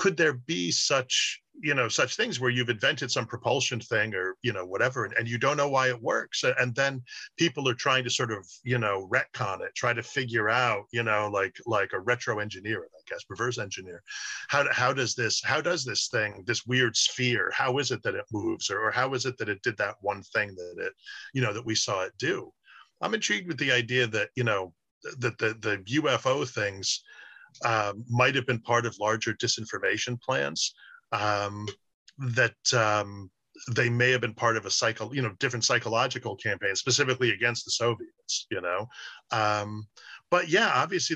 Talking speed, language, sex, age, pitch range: 205 wpm, English, male, 50-69, 105-135 Hz